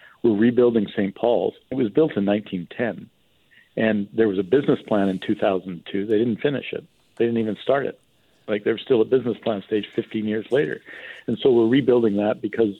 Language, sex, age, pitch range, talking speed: English, male, 50-69, 100-110 Hz, 200 wpm